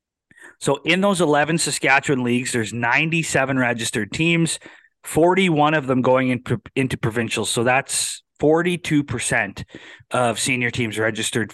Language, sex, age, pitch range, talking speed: English, male, 30-49, 120-160 Hz, 120 wpm